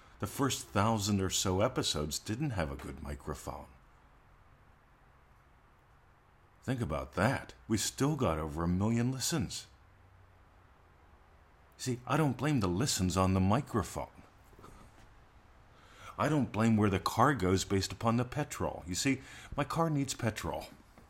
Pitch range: 75-110 Hz